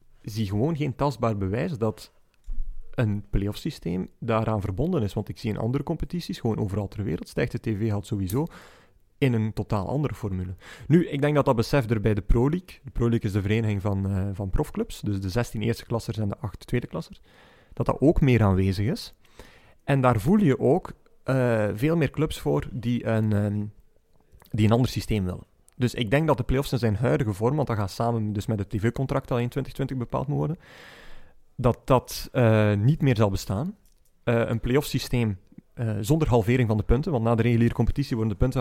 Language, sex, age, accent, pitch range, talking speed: Dutch, male, 40-59, Belgian, 105-135 Hz, 210 wpm